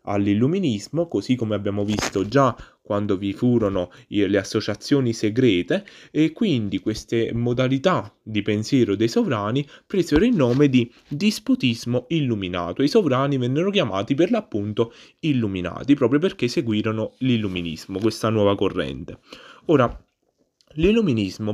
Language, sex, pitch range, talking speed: Italian, male, 105-145 Hz, 120 wpm